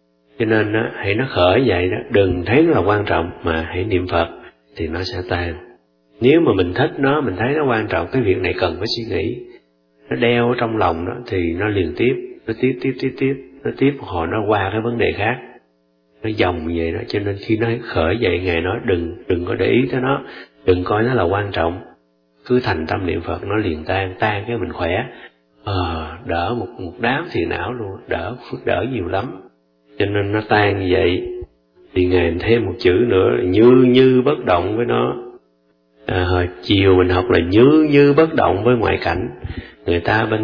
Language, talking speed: Vietnamese, 220 wpm